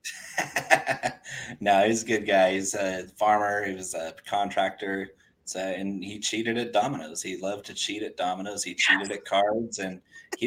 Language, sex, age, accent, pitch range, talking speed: English, male, 20-39, American, 95-115 Hz, 170 wpm